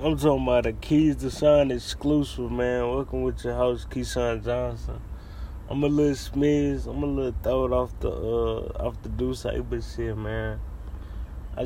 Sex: male